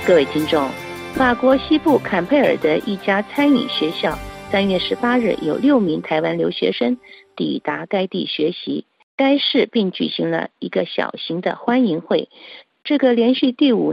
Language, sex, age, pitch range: Chinese, female, 50-69, 185-270 Hz